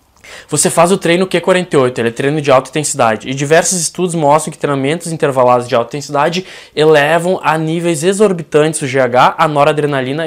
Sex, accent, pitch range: male, Brazilian, 140-175 Hz